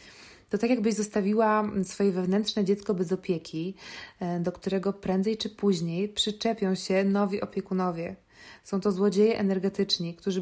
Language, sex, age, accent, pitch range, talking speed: Polish, female, 20-39, native, 180-205 Hz, 130 wpm